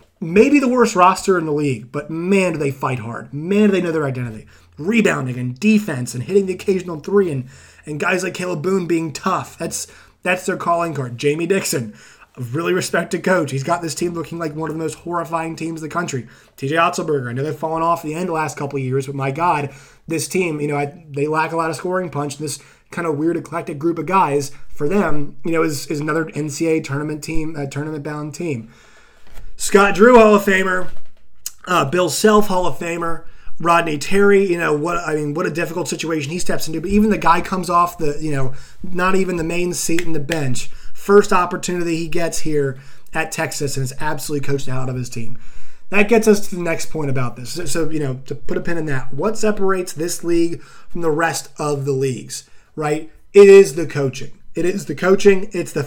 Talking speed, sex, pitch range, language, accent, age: 225 wpm, male, 145-180 Hz, English, American, 20-39